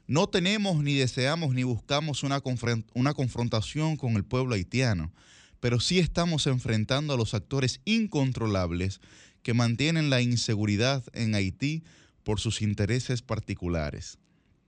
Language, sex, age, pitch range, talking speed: Spanish, male, 20-39, 110-135 Hz, 125 wpm